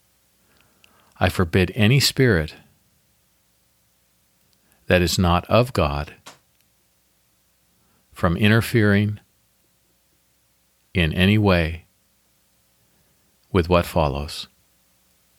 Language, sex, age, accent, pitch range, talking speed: English, male, 50-69, American, 80-110 Hz, 65 wpm